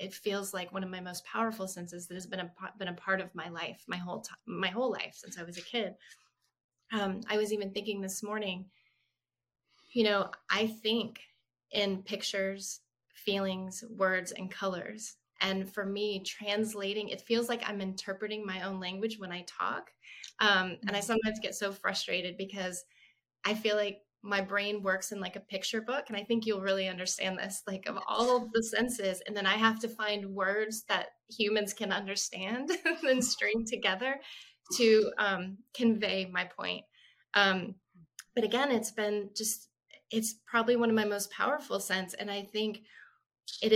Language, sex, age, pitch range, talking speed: English, female, 20-39, 190-220 Hz, 180 wpm